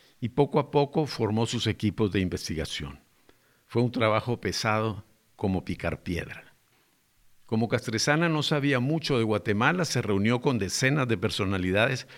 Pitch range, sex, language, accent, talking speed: 100-130 Hz, male, Spanish, Mexican, 145 wpm